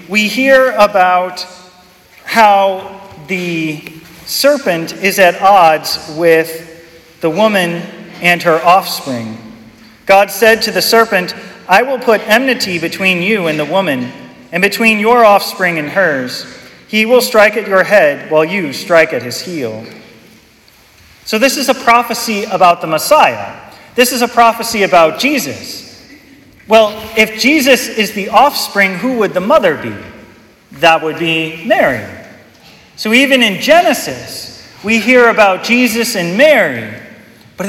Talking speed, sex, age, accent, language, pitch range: 140 wpm, male, 40-59, American, English, 175-235 Hz